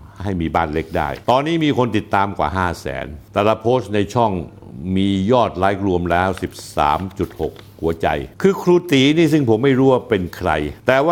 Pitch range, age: 90-120 Hz, 60-79